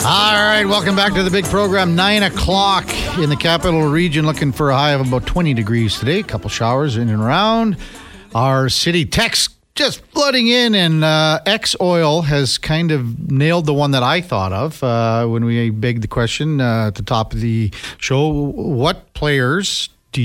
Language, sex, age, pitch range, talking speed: English, male, 50-69, 115-155 Hz, 195 wpm